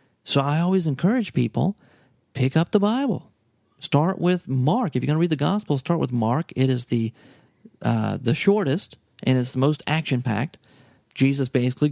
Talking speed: 175 wpm